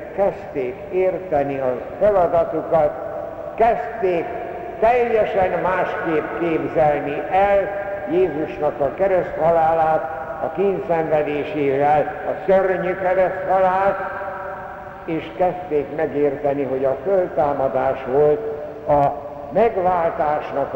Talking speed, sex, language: 75 wpm, male, Hungarian